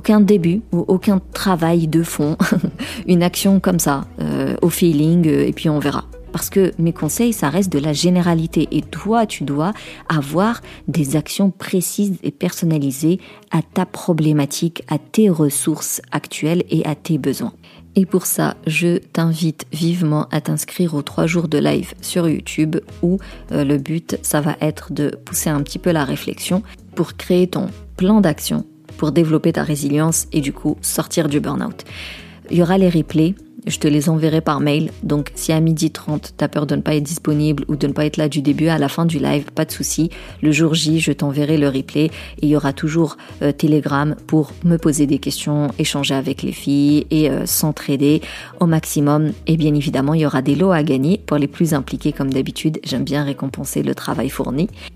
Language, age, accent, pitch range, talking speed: French, 40-59, French, 145-175 Hz, 200 wpm